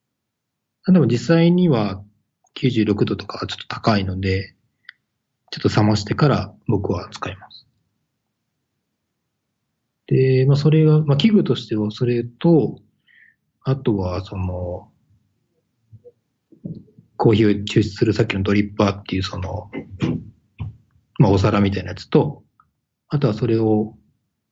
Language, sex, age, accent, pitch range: Japanese, male, 40-59, native, 105-135 Hz